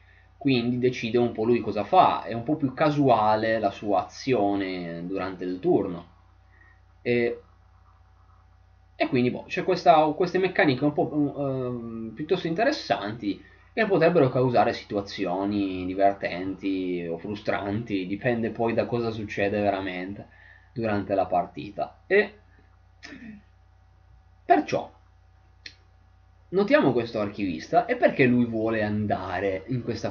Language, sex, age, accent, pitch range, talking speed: Italian, male, 20-39, native, 95-120 Hz, 120 wpm